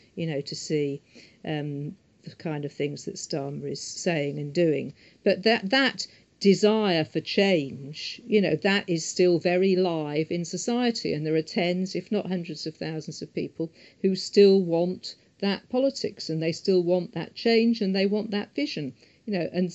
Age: 50-69